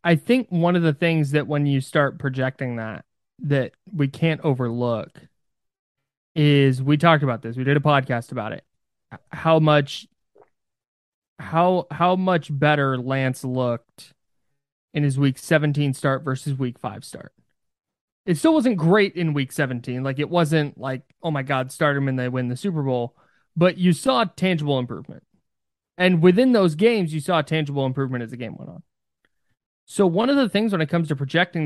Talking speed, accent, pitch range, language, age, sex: 180 wpm, American, 135-170 Hz, English, 20-39, male